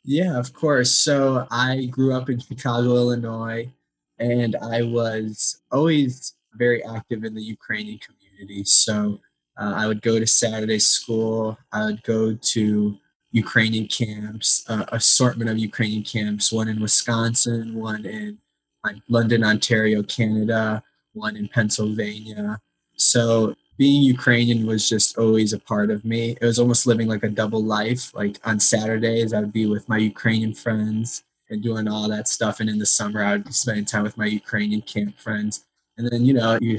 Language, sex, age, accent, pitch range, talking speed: English, male, 20-39, American, 105-120 Hz, 165 wpm